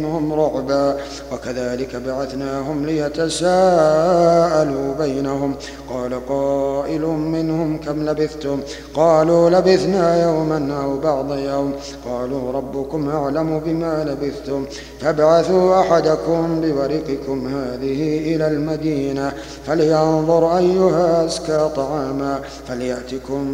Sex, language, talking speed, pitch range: male, Arabic, 80 wpm, 140-160 Hz